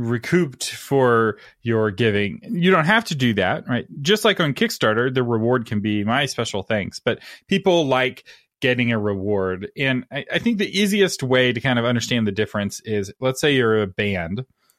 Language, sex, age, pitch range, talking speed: English, male, 30-49, 100-130 Hz, 190 wpm